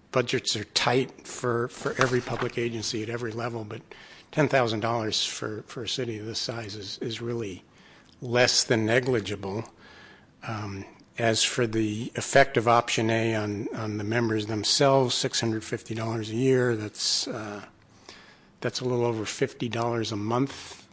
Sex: male